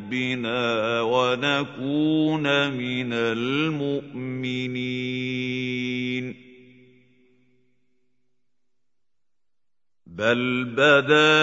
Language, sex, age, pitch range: Arabic, male, 50-69, 125-155 Hz